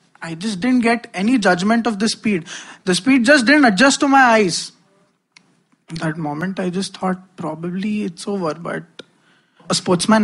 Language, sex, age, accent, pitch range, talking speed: Hindi, male, 20-39, native, 180-230 Hz, 170 wpm